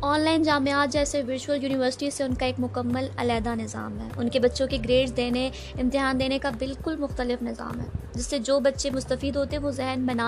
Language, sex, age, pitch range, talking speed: Urdu, female, 20-39, 235-280 Hz, 215 wpm